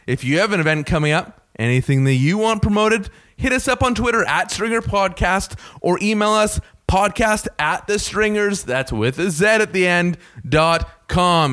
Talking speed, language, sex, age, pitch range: 180 wpm, English, male, 20-39, 125-195 Hz